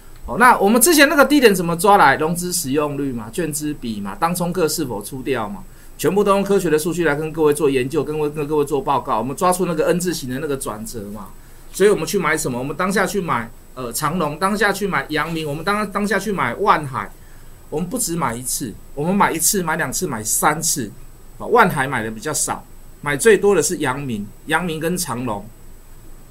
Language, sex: Chinese, male